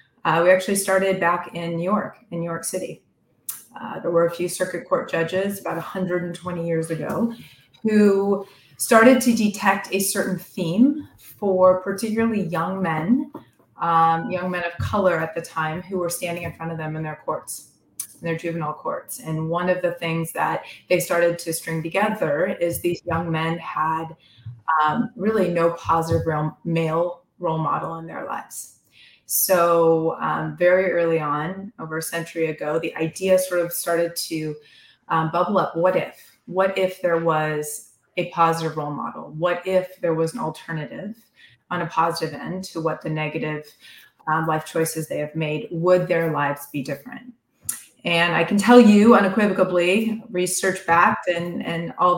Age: 30-49